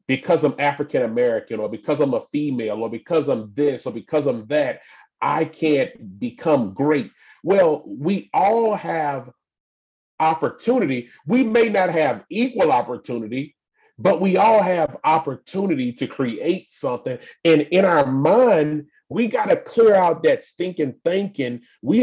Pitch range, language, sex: 135-210 Hz, English, male